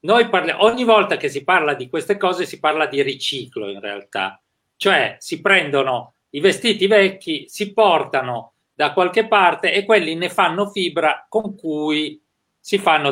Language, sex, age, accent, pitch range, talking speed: Italian, male, 40-59, native, 135-210 Hz, 165 wpm